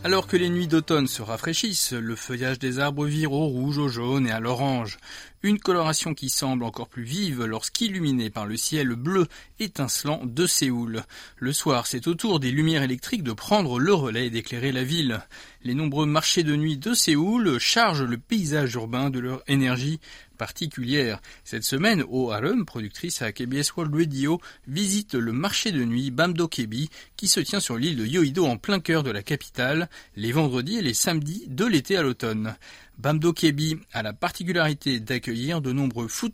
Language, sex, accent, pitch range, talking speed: French, male, French, 125-170 Hz, 180 wpm